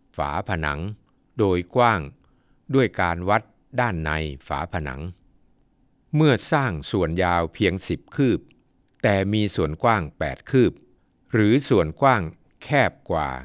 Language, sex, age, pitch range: Thai, male, 60-79, 85-115 Hz